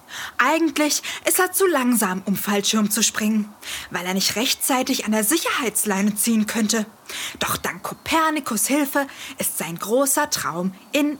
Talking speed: 145 wpm